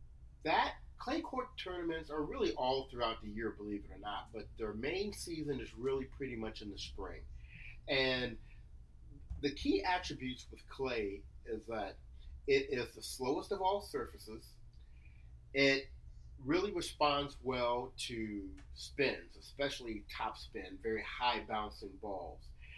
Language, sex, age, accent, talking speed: English, male, 40-59, American, 140 wpm